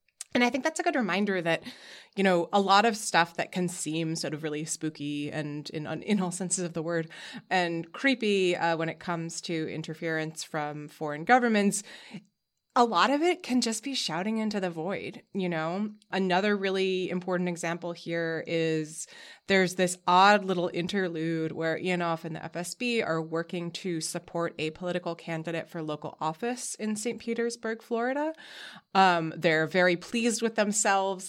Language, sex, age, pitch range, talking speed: English, female, 20-39, 165-215 Hz, 170 wpm